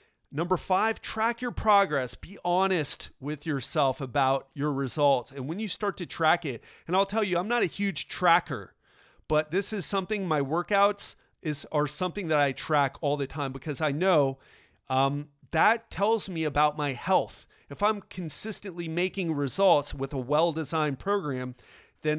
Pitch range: 145-190 Hz